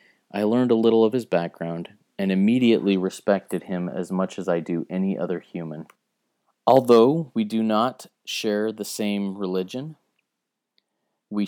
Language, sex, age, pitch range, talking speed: English, male, 30-49, 90-110 Hz, 145 wpm